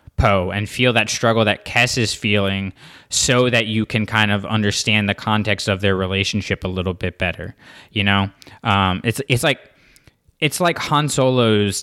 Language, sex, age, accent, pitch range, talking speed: English, male, 20-39, American, 105-120 Hz, 180 wpm